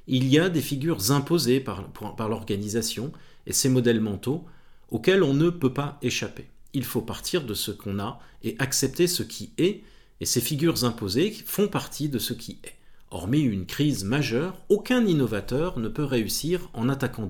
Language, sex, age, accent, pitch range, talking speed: French, male, 40-59, French, 115-155 Hz, 175 wpm